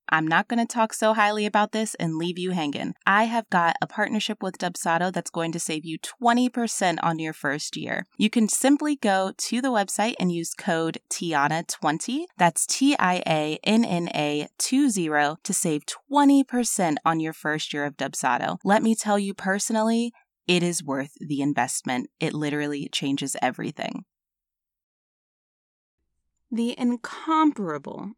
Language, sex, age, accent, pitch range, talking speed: English, female, 20-39, American, 155-210 Hz, 145 wpm